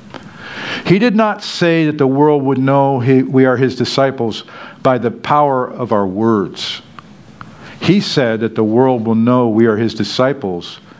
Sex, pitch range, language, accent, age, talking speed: male, 125-150 Hz, English, American, 50-69, 165 wpm